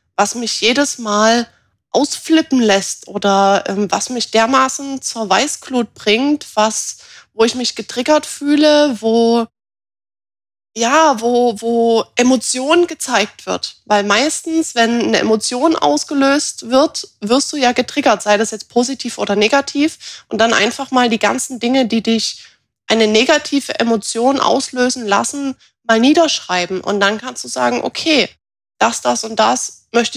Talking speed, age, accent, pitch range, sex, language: 140 wpm, 20-39, German, 215-260 Hz, female, German